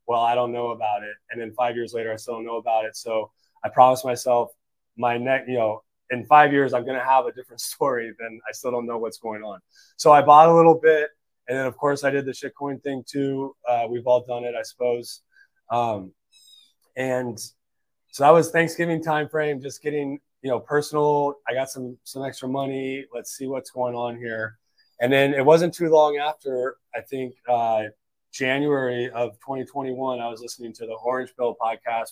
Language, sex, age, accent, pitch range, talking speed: English, male, 20-39, American, 115-140 Hz, 210 wpm